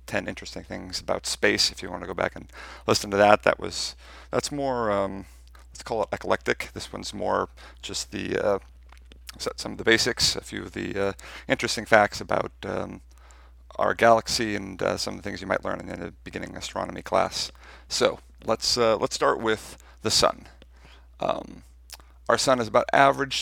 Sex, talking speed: male, 190 wpm